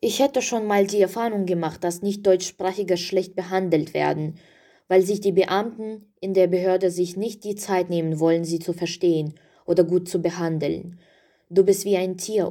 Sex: female